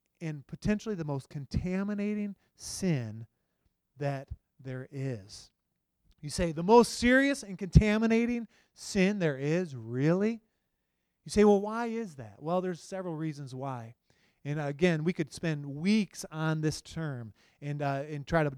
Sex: male